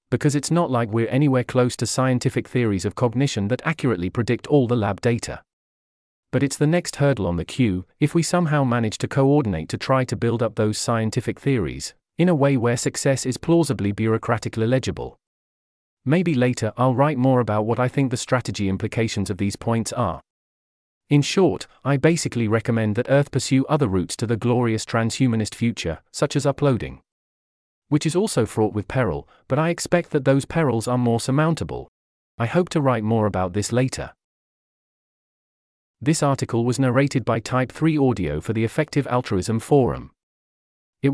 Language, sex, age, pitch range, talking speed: English, male, 40-59, 110-140 Hz, 175 wpm